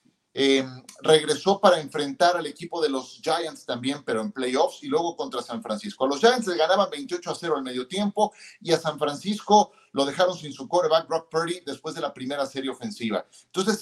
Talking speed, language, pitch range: 205 wpm, Spanish, 140-185 Hz